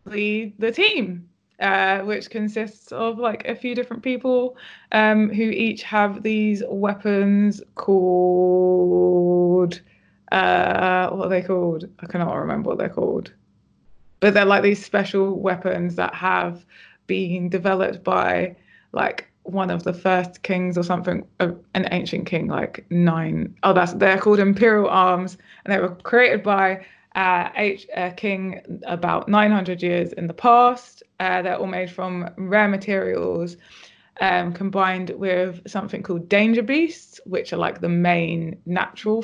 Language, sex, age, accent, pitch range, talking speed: English, female, 20-39, British, 180-210 Hz, 145 wpm